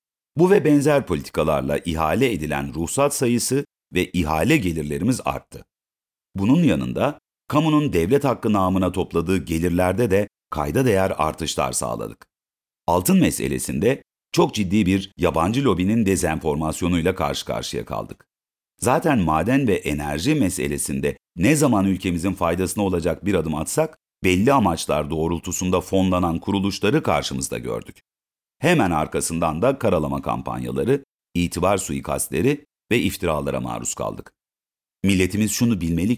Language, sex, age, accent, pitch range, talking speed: Turkish, male, 50-69, native, 80-115 Hz, 115 wpm